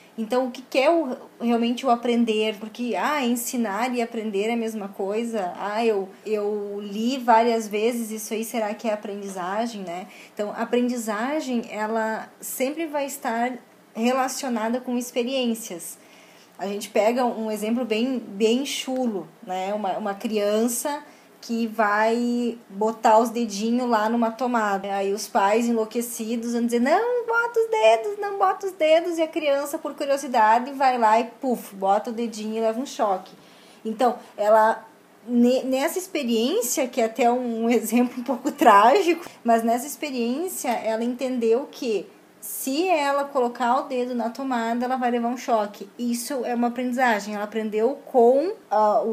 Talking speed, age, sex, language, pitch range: 155 wpm, 20-39, female, Portuguese, 220-255 Hz